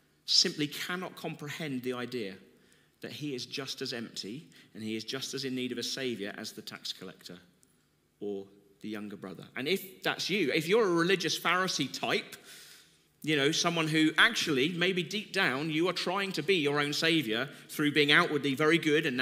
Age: 40-59